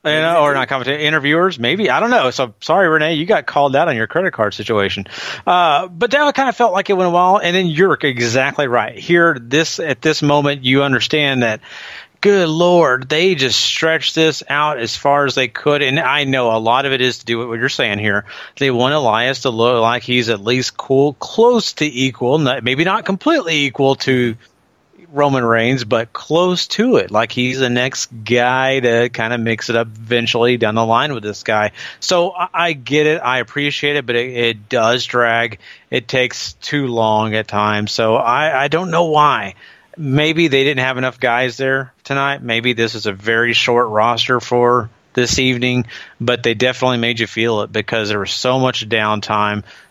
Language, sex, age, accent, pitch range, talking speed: English, male, 40-59, American, 115-150 Hz, 205 wpm